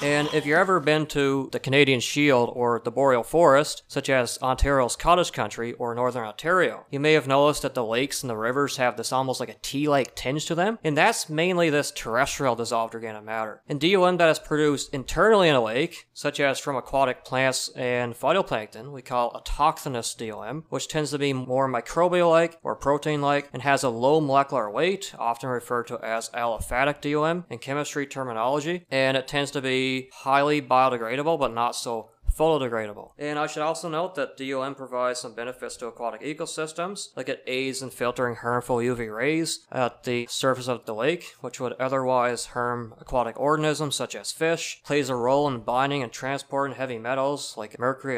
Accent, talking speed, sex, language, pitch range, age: American, 185 wpm, male, English, 125-150 Hz, 30-49